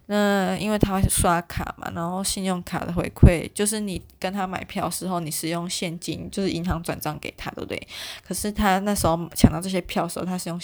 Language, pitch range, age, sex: Chinese, 170-200 Hz, 20-39, female